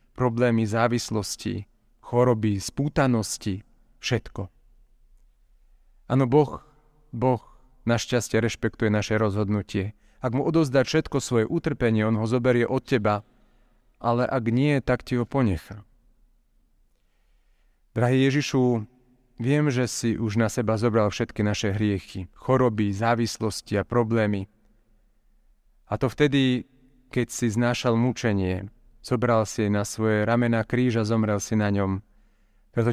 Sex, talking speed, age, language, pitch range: male, 120 wpm, 30-49, Slovak, 110-125 Hz